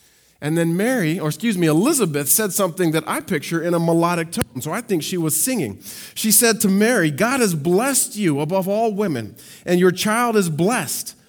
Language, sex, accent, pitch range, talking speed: English, male, American, 150-220 Hz, 200 wpm